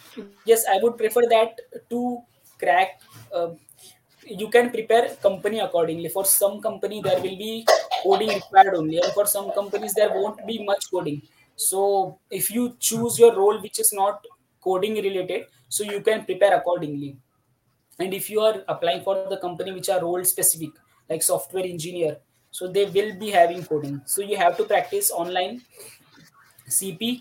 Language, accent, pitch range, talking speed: Hindi, native, 170-220 Hz, 165 wpm